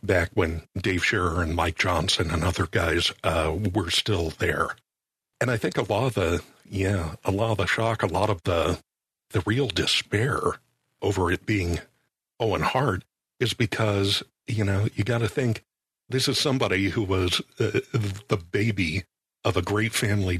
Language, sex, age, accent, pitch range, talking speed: English, male, 60-79, American, 90-115 Hz, 175 wpm